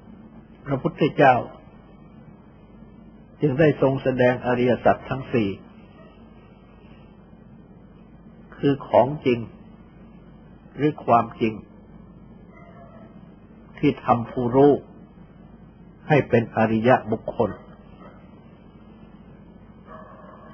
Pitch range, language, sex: 120-145 Hz, Thai, male